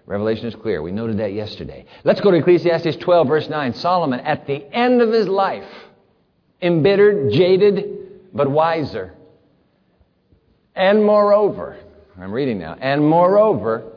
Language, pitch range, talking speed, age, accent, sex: English, 155-210 Hz, 135 wpm, 50-69, American, male